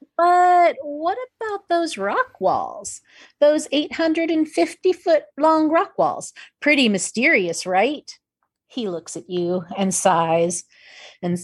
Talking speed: 115 wpm